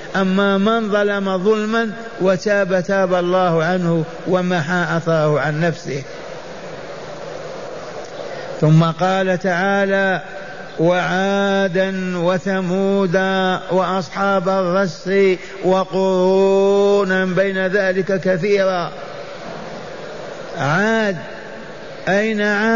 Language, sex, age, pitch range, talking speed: Arabic, male, 50-69, 185-205 Hz, 65 wpm